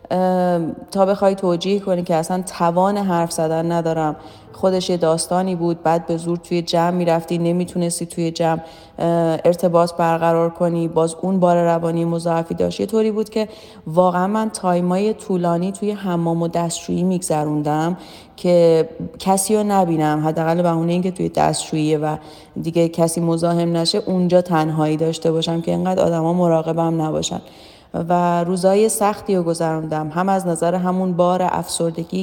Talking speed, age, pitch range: 150 wpm, 30-49, 165-185 Hz